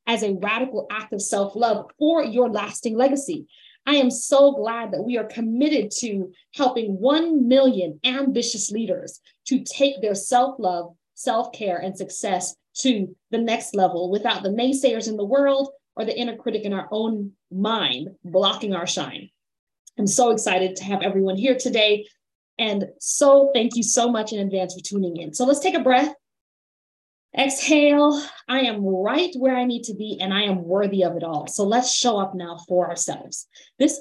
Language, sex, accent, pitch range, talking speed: English, female, American, 195-265 Hz, 175 wpm